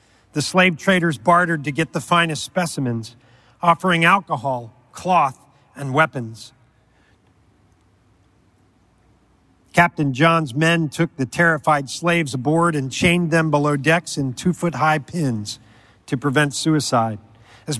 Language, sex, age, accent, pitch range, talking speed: English, male, 40-59, American, 120-165 Hz, 115 wpm